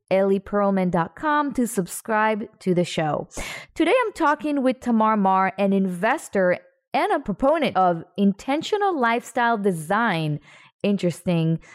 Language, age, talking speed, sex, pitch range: English, 20-39, 110 wpm, female, 180-245 Hz